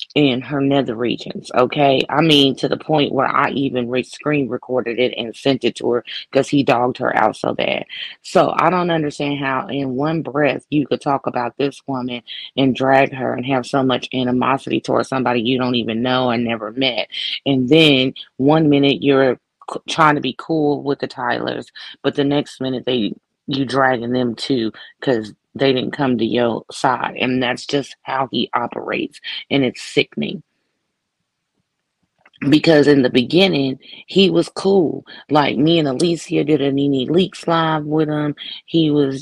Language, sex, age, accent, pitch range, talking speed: English, female, 30-49, American, 130-155 Hz, 175 wpm